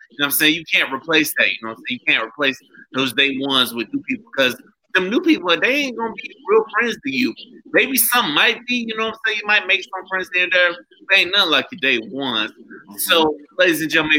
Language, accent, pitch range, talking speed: English, American, 145-245 Hz, 260 wpm